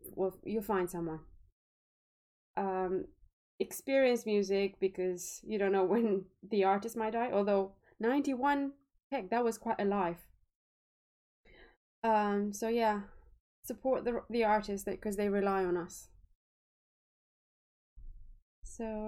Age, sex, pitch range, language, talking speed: 20-39, female, 175-215 Hz, English, 115 wpm